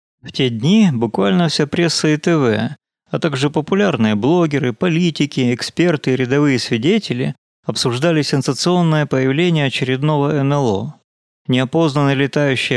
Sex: male